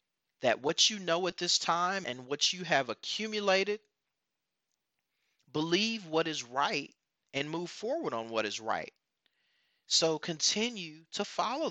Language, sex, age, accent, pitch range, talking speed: English, male, 40-59, American, 115-160 Hz, 140 wpm